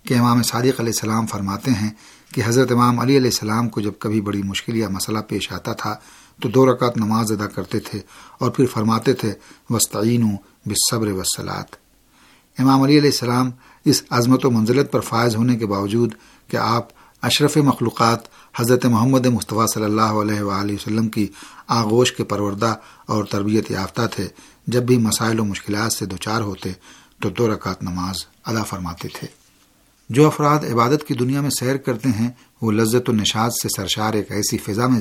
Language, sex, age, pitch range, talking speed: Urdu, male, 50-69, 105-125 Hz, 180 wpm